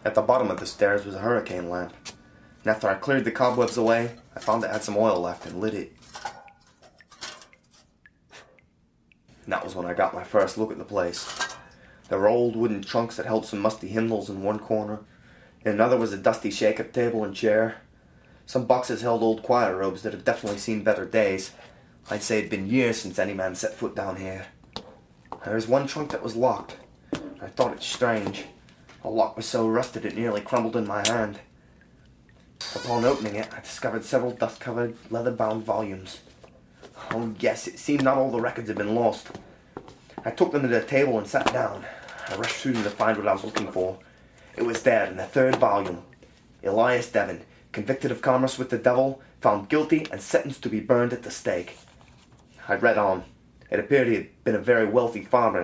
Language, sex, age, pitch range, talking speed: English, male, 20-39, 95-120 Hz, 200 wpm